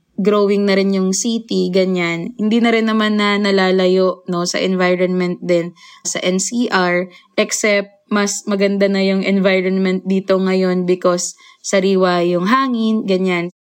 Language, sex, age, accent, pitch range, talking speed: Filipino, female, 20-39, native, 180-205 Hz, 135 wpm